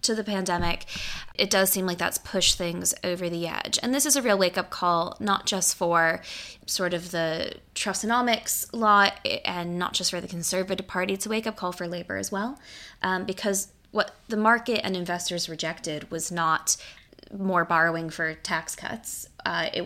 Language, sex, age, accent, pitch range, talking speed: English, female, 20-39, American, 175-205 Hz, 185 wpm